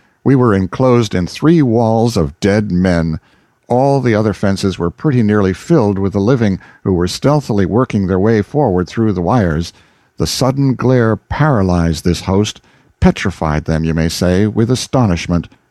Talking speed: 165 wpm